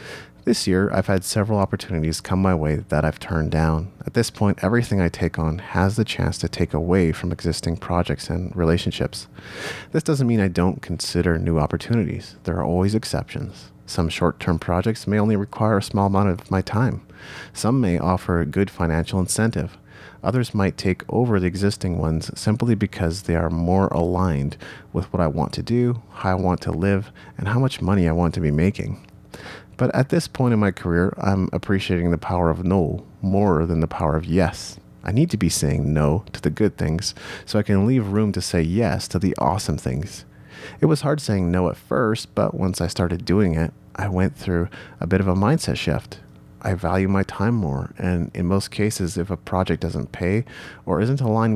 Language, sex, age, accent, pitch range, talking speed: English, male, 30-49, American, 85-100 Hz, 205 wpm